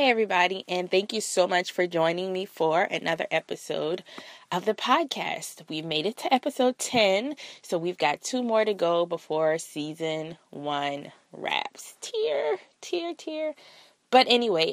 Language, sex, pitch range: English, female, 155-200 Hz